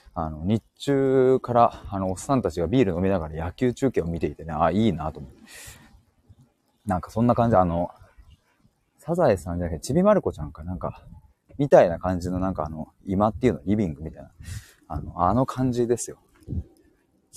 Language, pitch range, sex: Japanese, 85-125 Hz, male